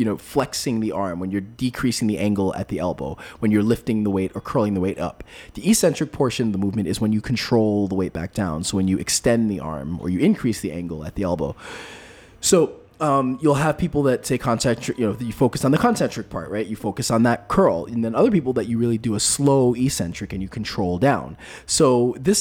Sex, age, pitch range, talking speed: male, 20-39, 105-140 Hz, 240 wpm